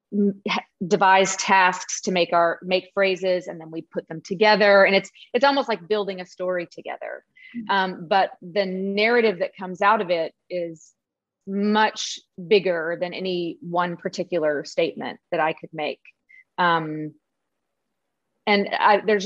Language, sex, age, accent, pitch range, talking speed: English, female, 30-49, American, 175-210 Hz, 145 wpm